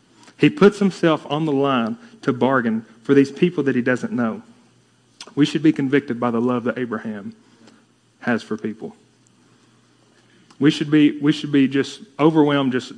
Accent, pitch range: American, 125-155 Hz